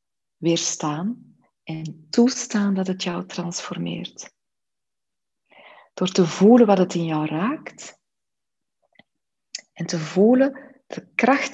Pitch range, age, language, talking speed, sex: 170-200 Hz, 40-59, Dutch, 105 wpm, female